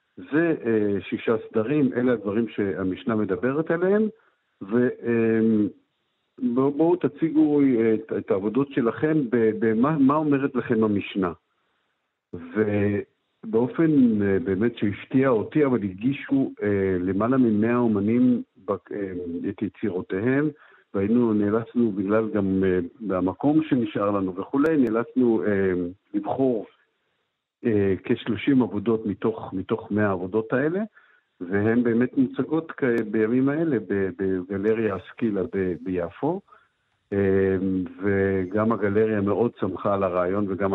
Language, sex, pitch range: Hebrew, male, 95-125 Hz